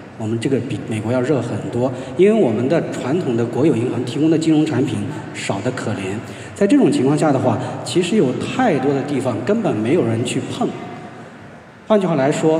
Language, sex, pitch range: Chinese, male, 120-160 Hz